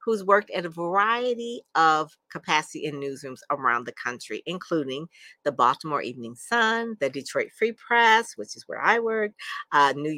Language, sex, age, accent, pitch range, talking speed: English, female, 50-69, American, 135-190 Hz, 165 wpm